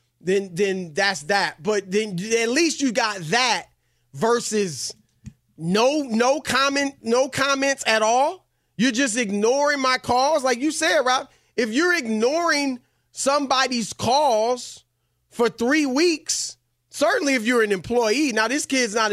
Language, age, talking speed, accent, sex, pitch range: English, 30-49, 140 wpm, American, male, 195-260 Hz